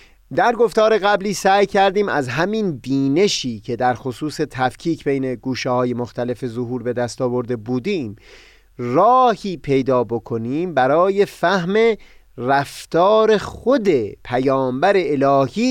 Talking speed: 115 wpm